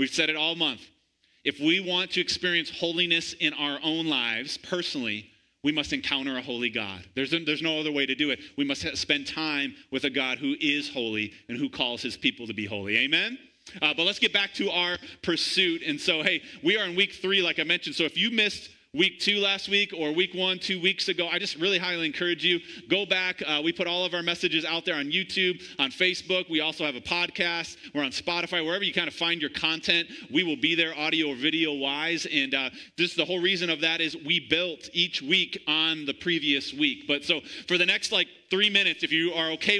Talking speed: 235 wpm